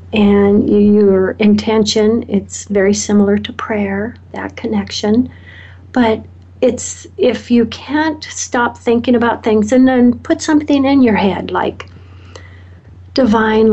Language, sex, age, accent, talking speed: English, female, 60-79, American, 120 wpm